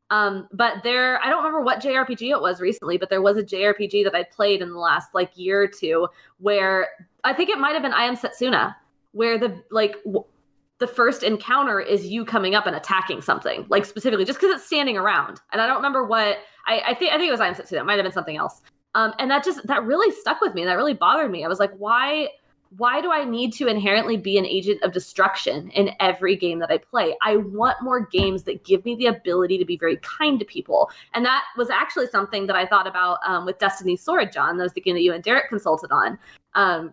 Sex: female